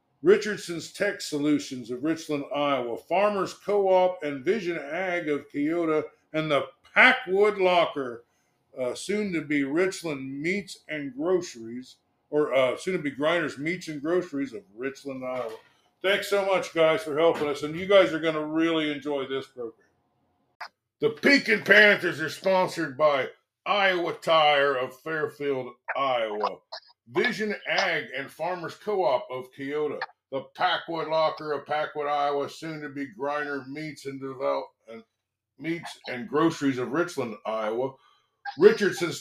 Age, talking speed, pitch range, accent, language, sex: 50-69, 135 wpm, 140-195 Hz, American, English, male